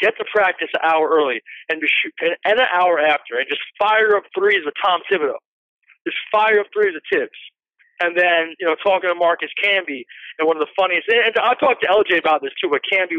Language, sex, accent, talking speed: English, male, American, 225 wpm